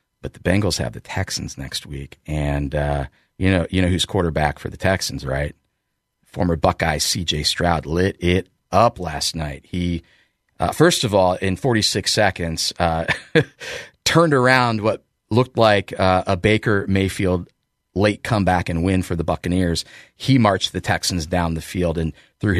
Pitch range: 80-100 Hz